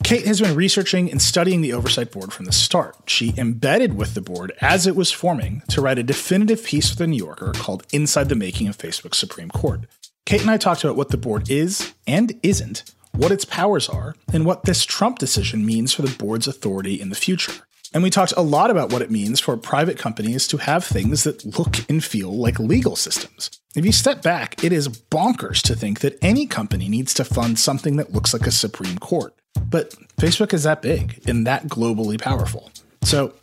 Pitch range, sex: 110-165 Hz, male